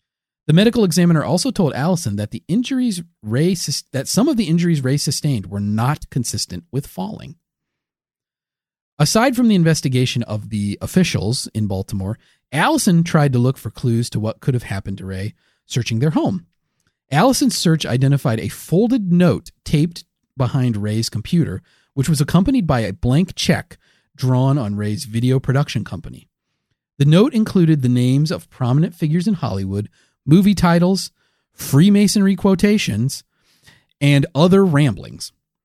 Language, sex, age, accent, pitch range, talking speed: English, male, 40-59, American, 120-180 Hz, 145 wpm